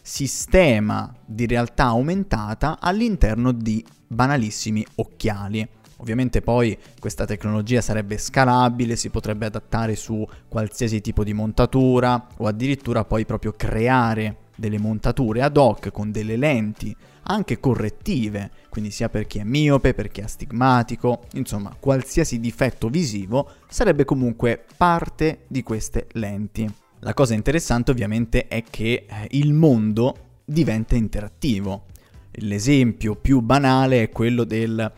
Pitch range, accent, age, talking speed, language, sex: 110-130 Hz, native, 20-39, 125 wpm, Italian, male